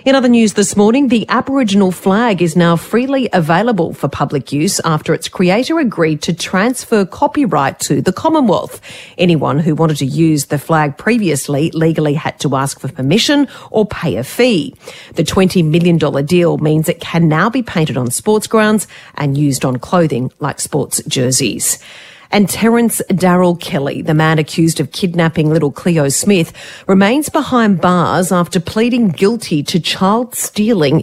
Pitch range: 145-200 Hz